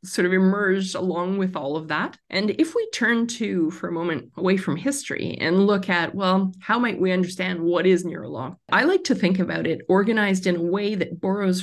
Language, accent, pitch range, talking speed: English, American, 170-195 Hz, 220 wpm